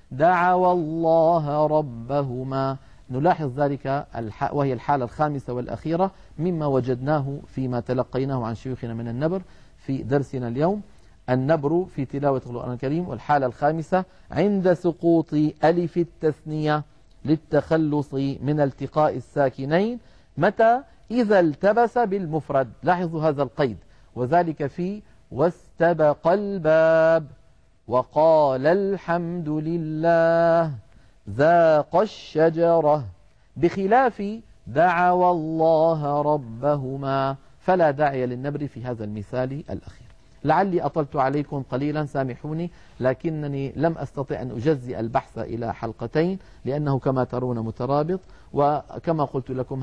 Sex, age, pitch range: male, 50-69, 130-165 Hz